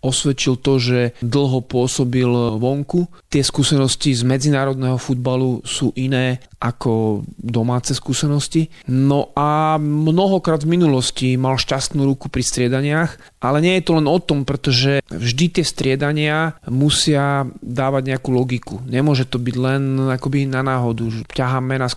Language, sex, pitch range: Slovak, male, 125-145 Hz